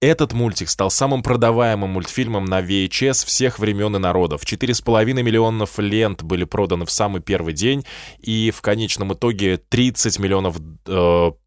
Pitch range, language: 90-120 Hz, Russian